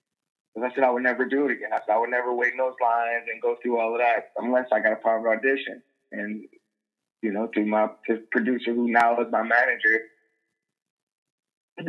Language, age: English, 20-39